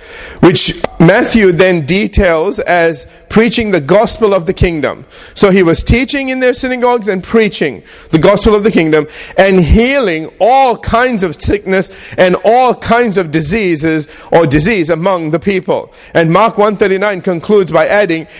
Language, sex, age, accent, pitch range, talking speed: English, male, 40-59, American, 155-210 Hz, 160 wpm